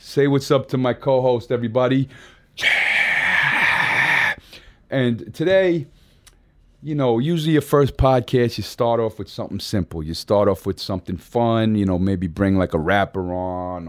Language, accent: English, American